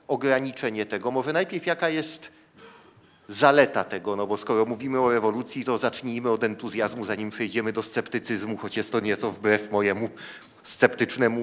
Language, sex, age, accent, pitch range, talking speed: Polish, male, 40-59, native, 110-150 Hz, 150 wpm